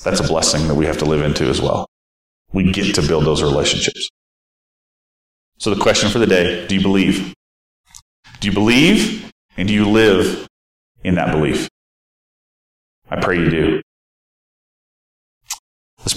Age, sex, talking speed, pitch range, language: 40-59, male, 150 wpm, 95-120 Hz, English